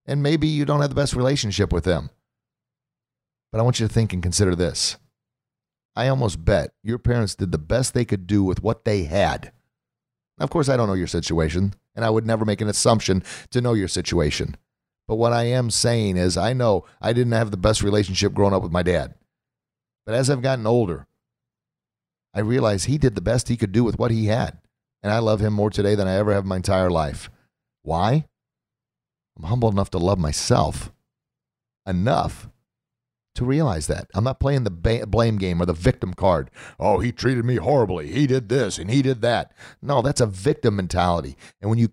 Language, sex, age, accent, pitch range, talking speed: English, male, 40-59, American, 100-125 Hz, 210 wpm